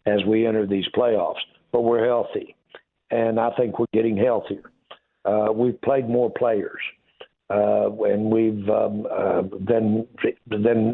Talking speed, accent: 145 wpm, American